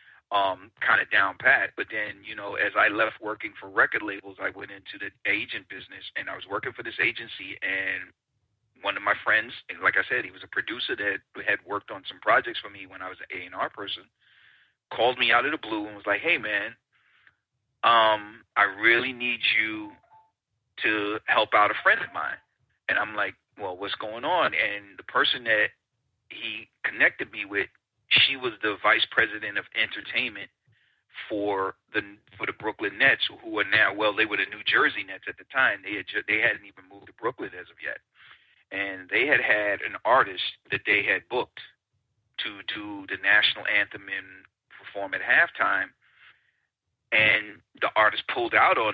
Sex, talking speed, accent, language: male, 190 wpm, American, English